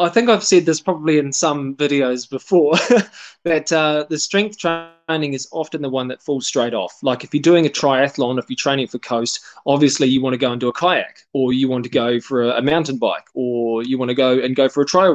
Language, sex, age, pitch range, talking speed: English, male, 20-39, 125-160 Hz, 250 wpm